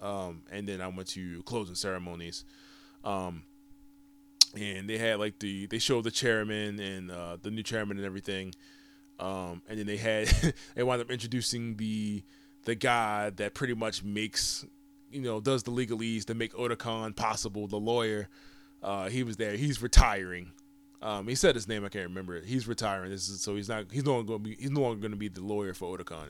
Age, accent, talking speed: 20-39, American, 205 wpm